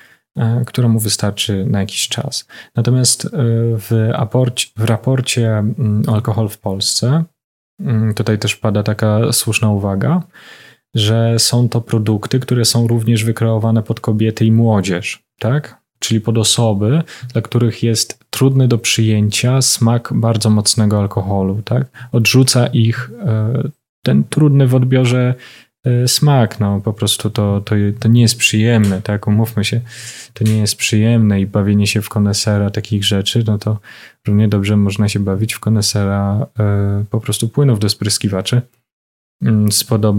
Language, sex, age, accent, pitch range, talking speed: Polish, male, 20-39, native, 105-120 Hz, 135 wpm